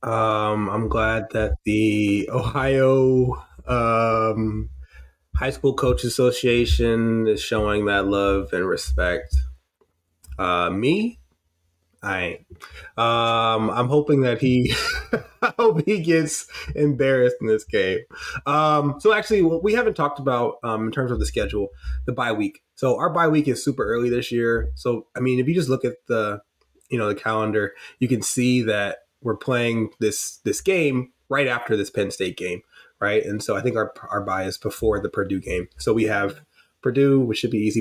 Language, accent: English, American